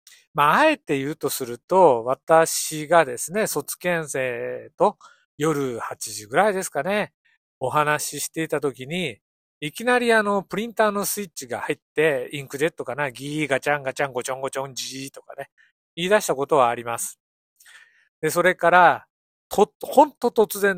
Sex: male